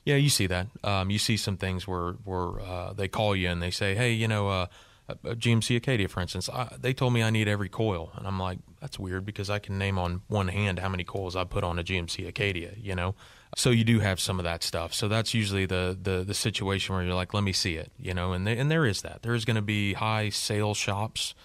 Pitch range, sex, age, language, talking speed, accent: 90-110 Hz, male, 30-49, English, 270 wpm, American